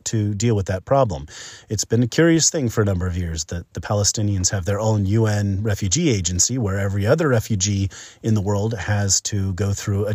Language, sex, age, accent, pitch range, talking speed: English, male, 30-49, American, 95-120 Hz, 215 wpm